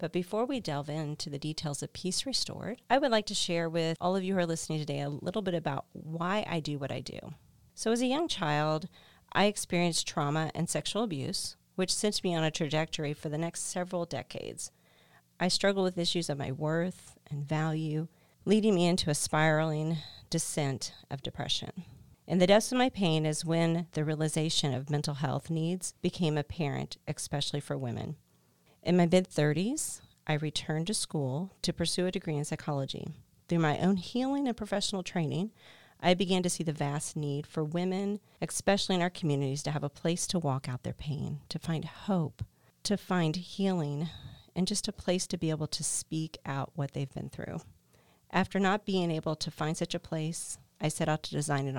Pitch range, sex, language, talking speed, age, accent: 150-180 Hz, female, English, 195 wpm, 40-59, American